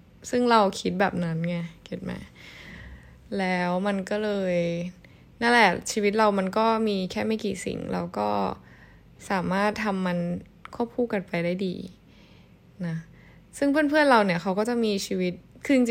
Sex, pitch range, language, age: female, 180-220 Hz, Thai, 20-39